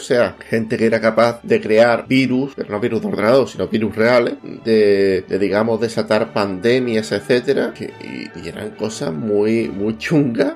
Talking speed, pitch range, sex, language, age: 170 wpm, 110-135 Hz, male, Spanish, 30-49